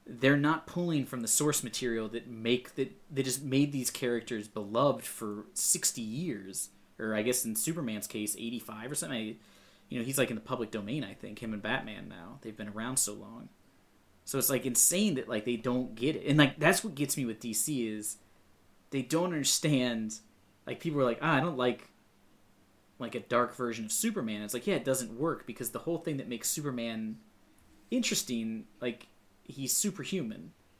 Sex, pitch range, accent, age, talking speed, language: male, 110-145 Hz, American, 20-39, 205 wpm, English